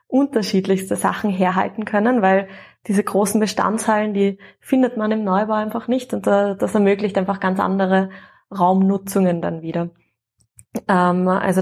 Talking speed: 130 wpm